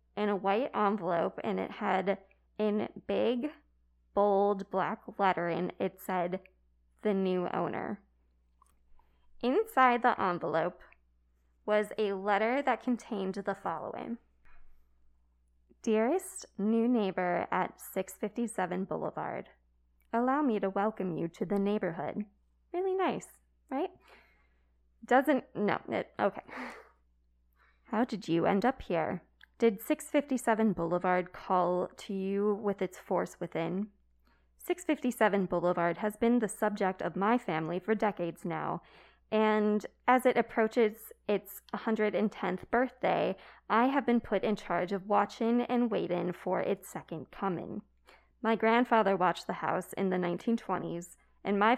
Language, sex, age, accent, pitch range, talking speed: English, female, 20-39, American, 175-225 Hz, 125 wpm